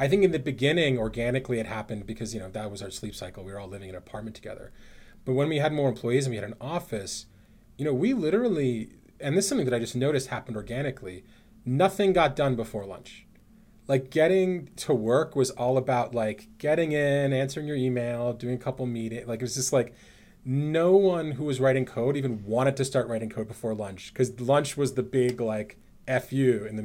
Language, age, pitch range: English, 30-49, 110-145 Hz